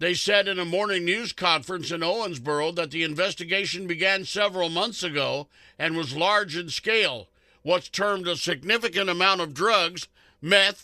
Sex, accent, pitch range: male, American, 170-205 Hz